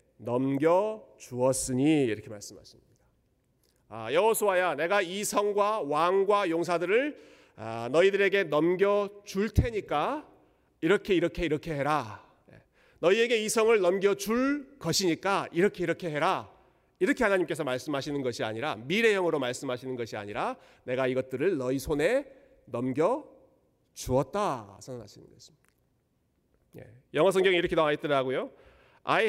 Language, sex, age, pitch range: Korean, male, 40-59, 135-210 Hz